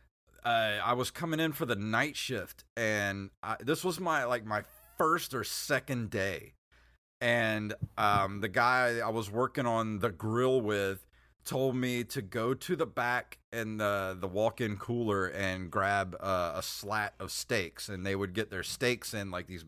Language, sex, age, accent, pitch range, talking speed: English, male, 30-49, American, 100-125 Hz, 180 wpm